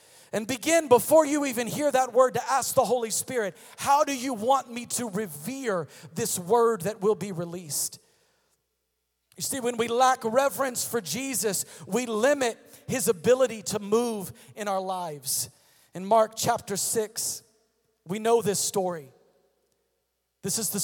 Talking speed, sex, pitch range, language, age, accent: 155 wpm, male, 170-235 Hz, English, 40-59, American